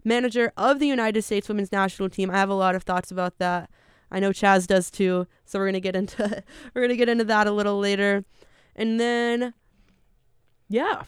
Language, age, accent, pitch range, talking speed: English, 20-39, American, 185-225 Hz, 200 wpm